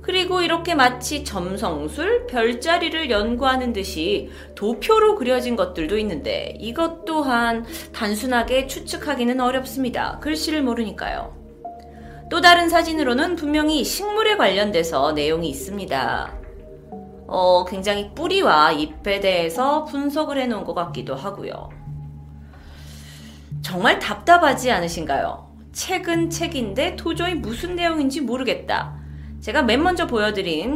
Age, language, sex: 30-49, Korean, female